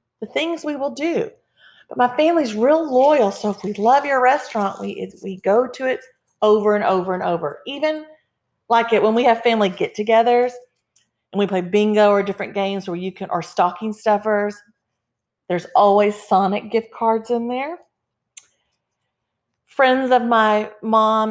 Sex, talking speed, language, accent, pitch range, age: female, 165 wpm, English, American, 190-240 Hz, 40-59